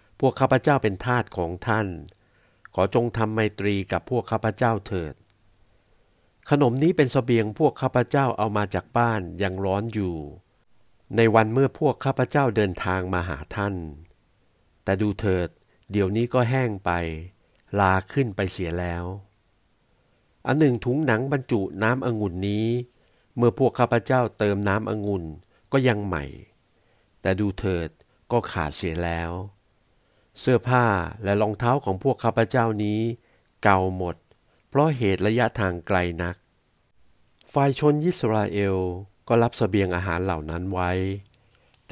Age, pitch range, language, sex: 60-79, 95-120 Hz, Thai, male